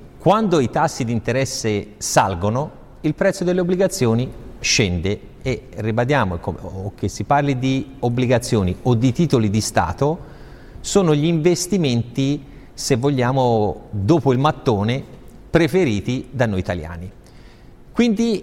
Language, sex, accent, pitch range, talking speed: Italian, male, native, 110-150 Hz, 115 wpm